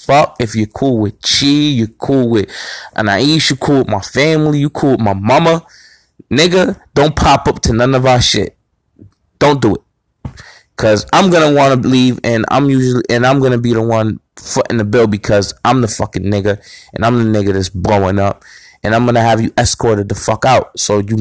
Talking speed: 205 wpm